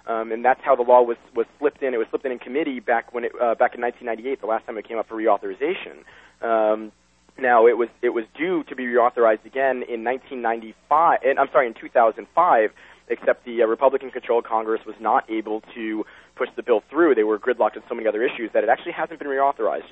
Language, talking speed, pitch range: English, 230 wpm, 115-130 Hz